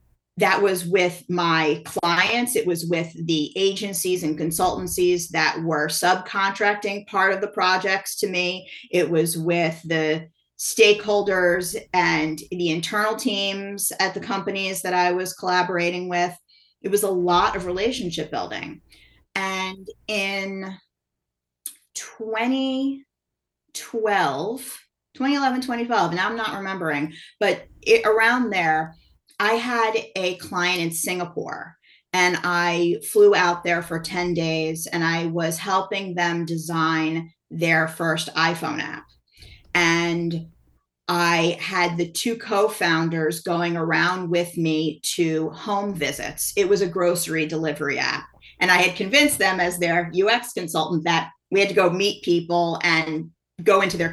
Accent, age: American, 30-49